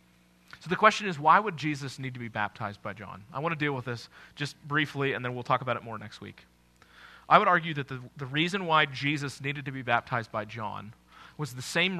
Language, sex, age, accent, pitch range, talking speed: English, male, 30-49, American, 125-165 Hz, 240 wpm